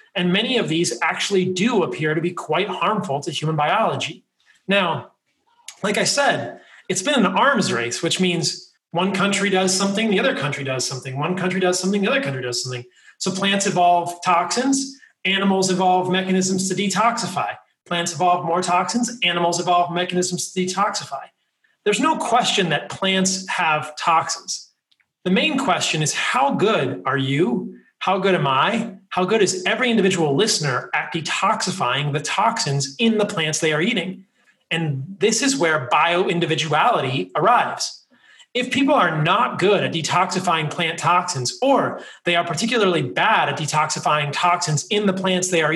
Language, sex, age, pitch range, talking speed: English, male, 30-49, 155-200 Hz, 165 wpm